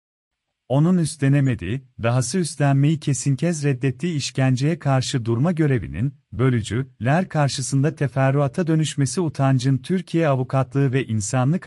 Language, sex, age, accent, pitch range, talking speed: Turkish, male, 40-59, native, 115-150 Hz, 110 wpm